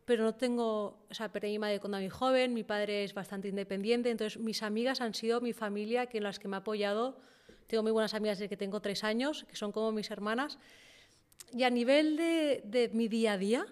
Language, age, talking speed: Spanish, 30-49, 235 wpm